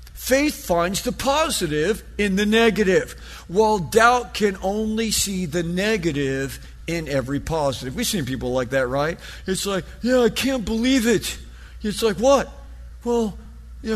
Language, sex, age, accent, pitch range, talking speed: English, male, 50-69, American, 170-240 Hz, 150 wpm